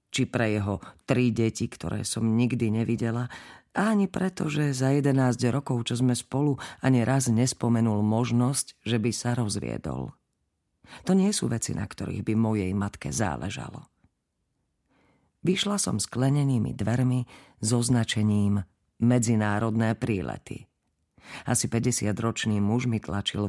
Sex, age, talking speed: female, 40-59, 125 wpm